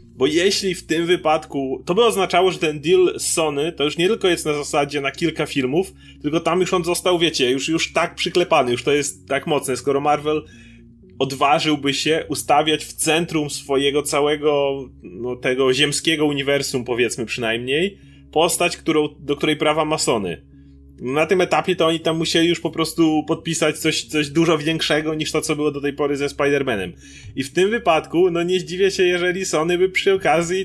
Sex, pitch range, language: male, 125-165 Hz, Polish